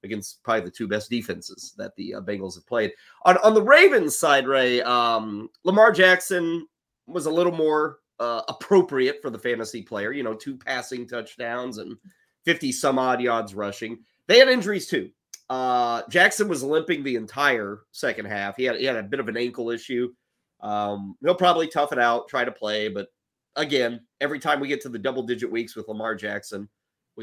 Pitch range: 110-155 Hz